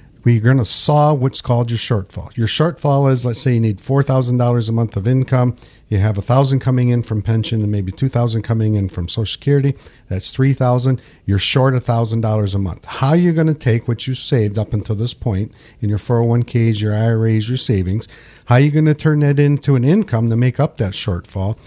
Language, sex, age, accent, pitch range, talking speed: English, male, 50-69, American, 110-135 Hz, 215 wpm